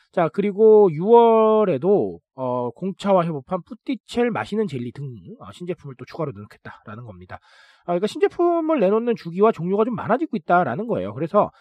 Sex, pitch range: male, 140-220 Hz